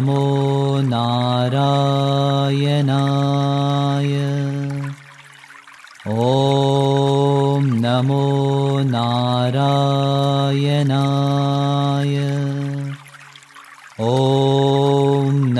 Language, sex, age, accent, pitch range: Italian, male, 40-59, Indian, 135-140 Hz